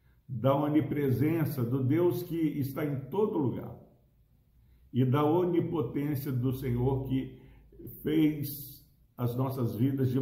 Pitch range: 125-150 Hz